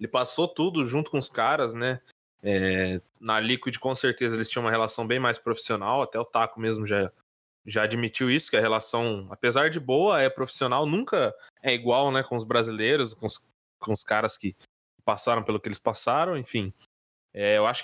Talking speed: 195 wpm